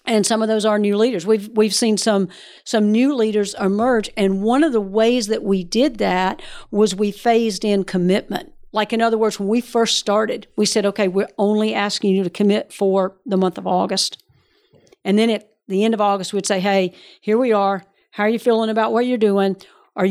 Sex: female